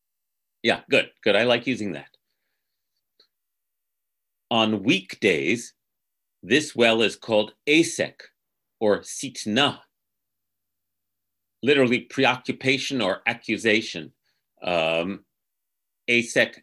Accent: American